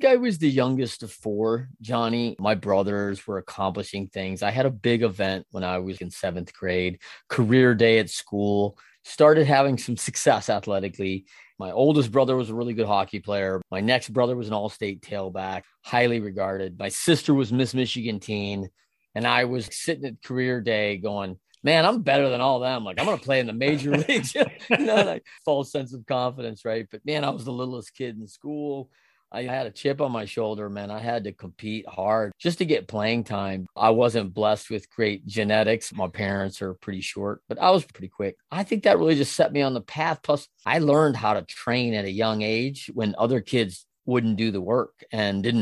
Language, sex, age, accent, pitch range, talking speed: English, male, 30-49, American, 100-130 Hz, 210 wpm